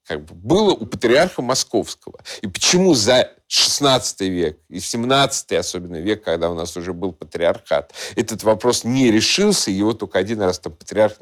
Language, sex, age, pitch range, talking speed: Russian, male, 50-69, 95-130 Hz, 155 wpm